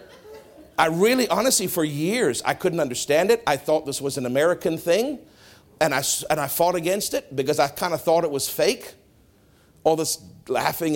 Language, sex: English, male